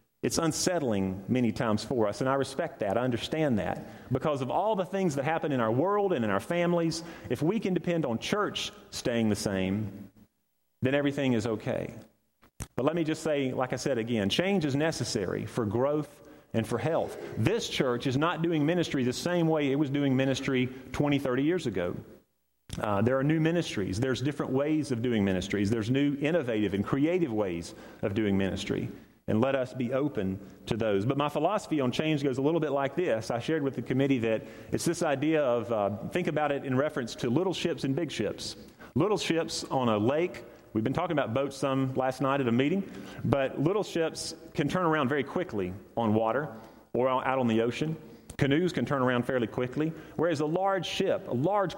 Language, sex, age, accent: English, male, 40-59, American